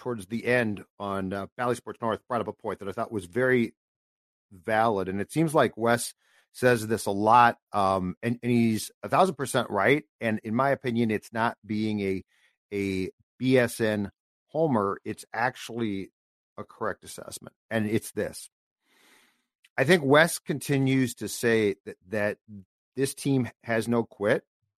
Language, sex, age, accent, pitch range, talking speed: English, male, 50-69, American, 110-135 Hz, 155 wpm